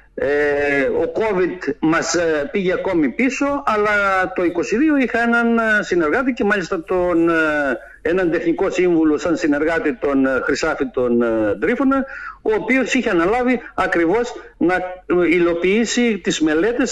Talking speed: 115 wpm